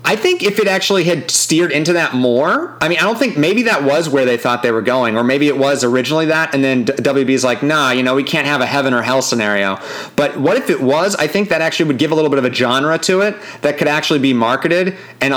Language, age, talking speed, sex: English, 30-49, 275 wpm, male